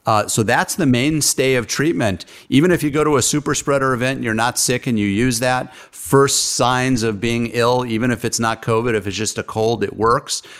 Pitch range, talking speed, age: 110-130 Hz, 230 wpm, 50-69